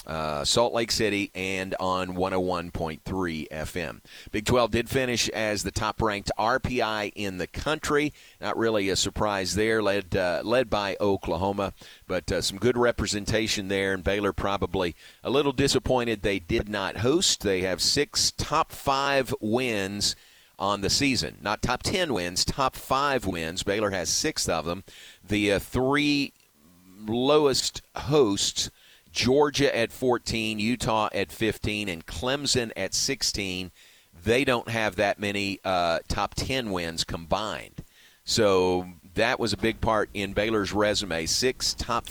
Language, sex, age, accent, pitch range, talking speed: English, male, 40-59, American, 95-115 Hz, 140 wpm